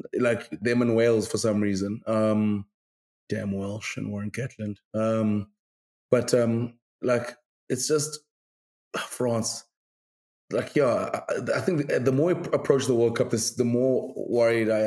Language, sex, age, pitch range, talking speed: English, male, 20-39, 105-125 Hz, 155 wpm